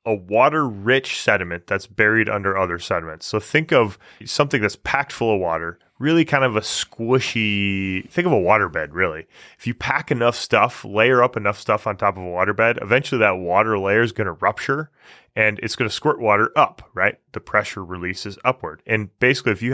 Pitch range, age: 95-125 Hz, 20-39